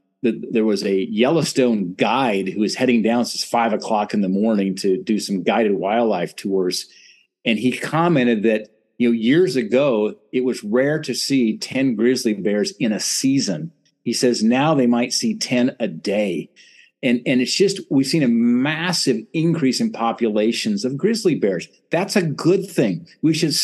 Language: English